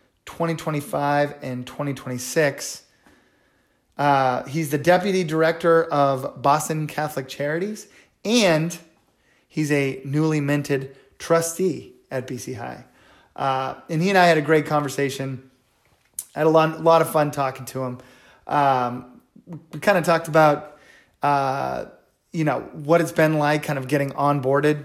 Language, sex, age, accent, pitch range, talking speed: English, male, 30-49, American, 135-160 Hz, 140 wpm